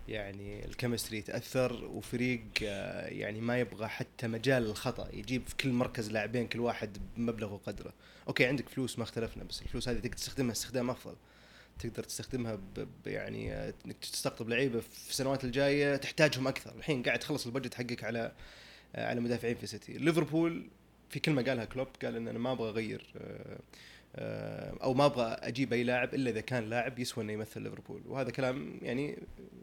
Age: 20-39